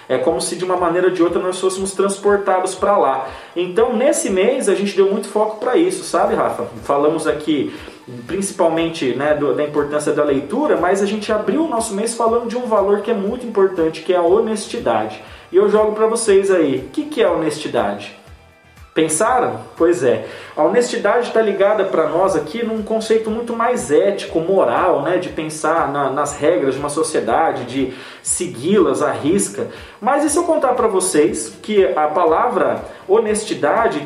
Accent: Brazilian